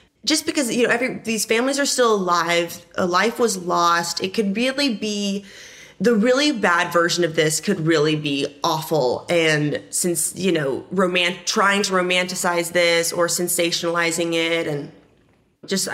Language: English